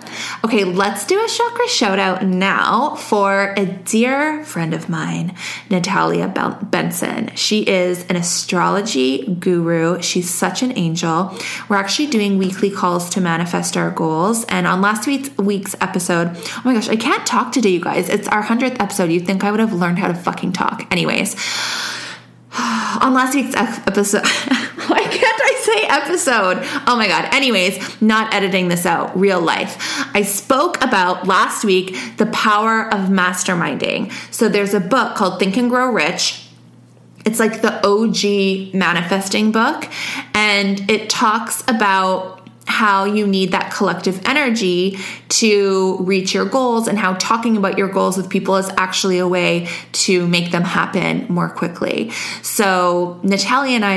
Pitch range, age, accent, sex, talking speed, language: 185-235 Hz, 20-39, American, female, 160 wpm, English